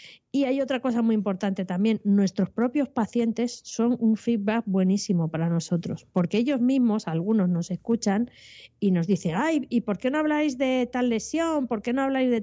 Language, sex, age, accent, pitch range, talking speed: Spanish, female, 20-39, Spanish, 190-245 Hz, 190 wpm